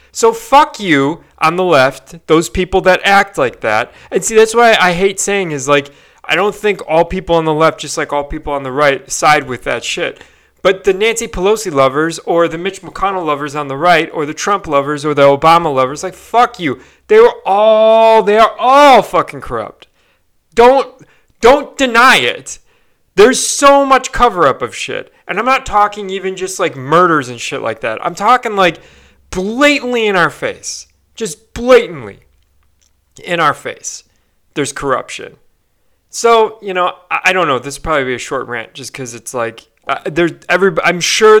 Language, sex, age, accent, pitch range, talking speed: English, male, 30-49, American, 150-225 Hz, 190 wpm